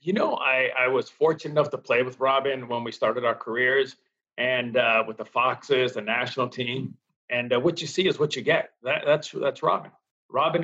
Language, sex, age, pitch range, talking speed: English, male, 40-59, 125-160 Hz, 215 wpm